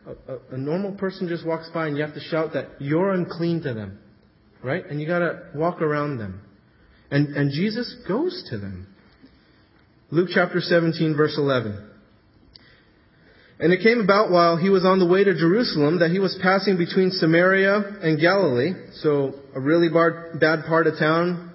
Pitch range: 145-200 Hz